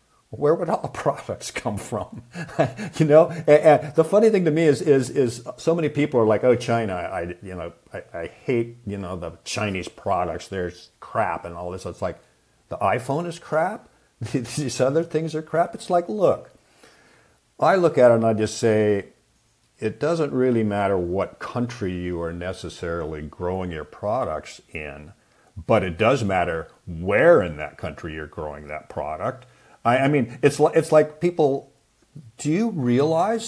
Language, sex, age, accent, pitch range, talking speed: English, male, 50-69, American, 100-150 Hz, 175 wpm